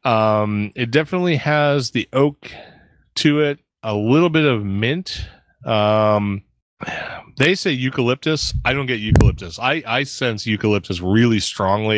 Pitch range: 95-120 Hz